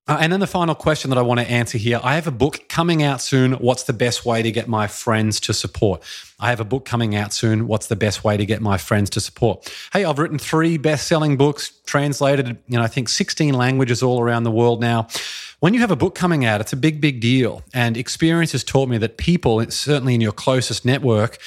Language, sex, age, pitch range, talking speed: English, male, 30-49, 110-140 Hz, 245 wpm